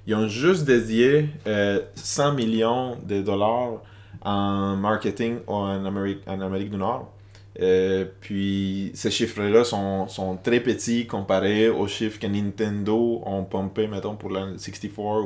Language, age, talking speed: French, 20-39, 140 wpm